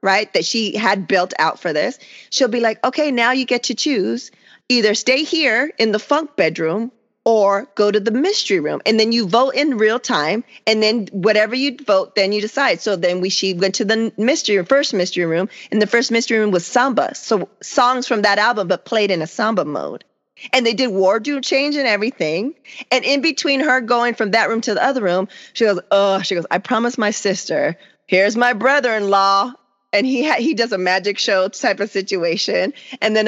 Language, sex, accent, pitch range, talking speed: English, female, American, 200-255 Hz, 215 wpm